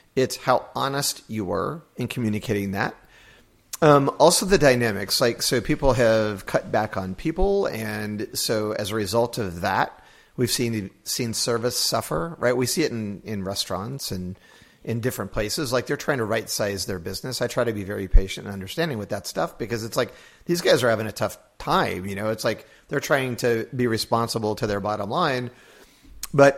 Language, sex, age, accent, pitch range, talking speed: English, male, 40-59, American, 105-130 Hz, 195 wpm